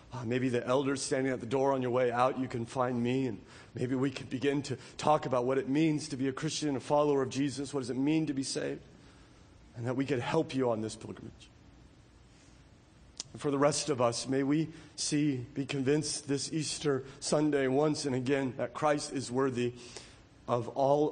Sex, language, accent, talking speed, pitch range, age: male, English, American, 210 wpm, 125-155 Hz, 40-59